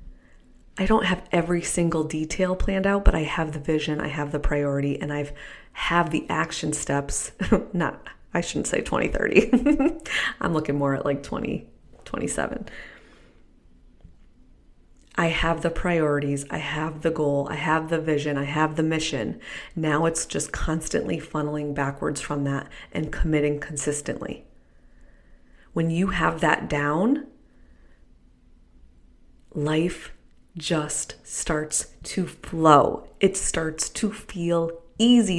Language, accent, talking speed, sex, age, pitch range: English, American, 130 wpm, female, 30-49, 145-185 Hz